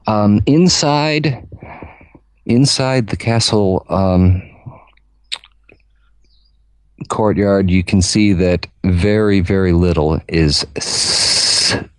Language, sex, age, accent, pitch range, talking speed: English, male, 40-59, American, 80-100 Hz, 80 wpm